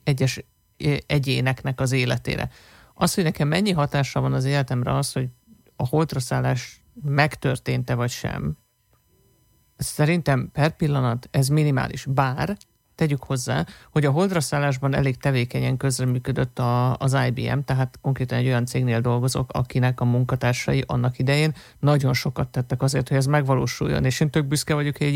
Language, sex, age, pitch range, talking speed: Hungarian, male, 50-69, 125-150 Hz, 145 wpm